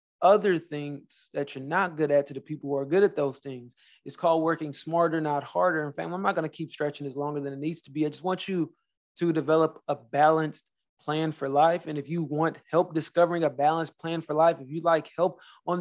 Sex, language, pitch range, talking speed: male, English, 150-175 Hz, 245 wpm